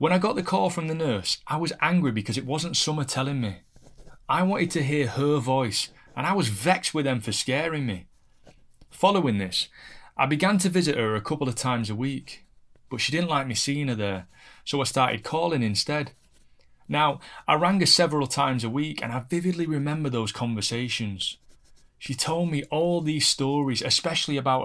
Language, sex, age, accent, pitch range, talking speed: English, male, 30-49, British, 115-150 Hz, 195 wpm